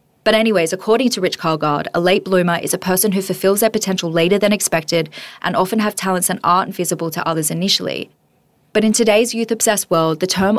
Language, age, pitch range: English, 20-39, 175-210 Hz